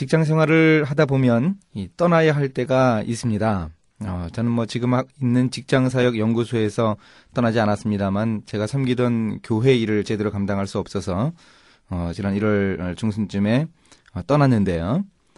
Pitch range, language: 100-145 Hz, Korean